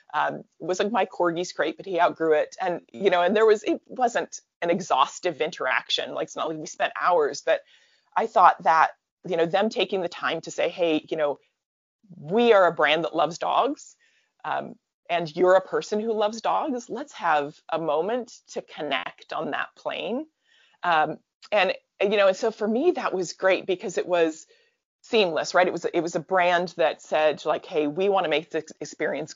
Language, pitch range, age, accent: English, 165-225 Hz, 30-49, American